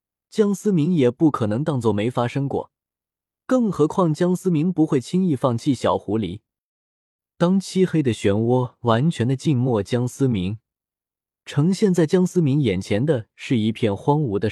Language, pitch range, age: Chinese, 110-160 Hz, 20-39